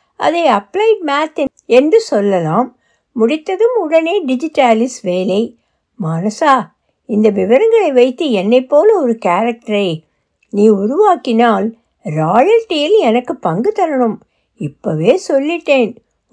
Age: 60-79